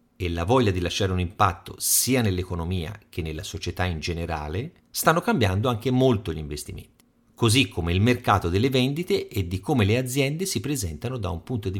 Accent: native